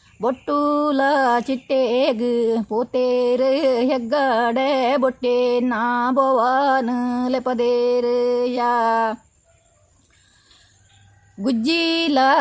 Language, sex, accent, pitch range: Kannada, female, native, 240-265 Hz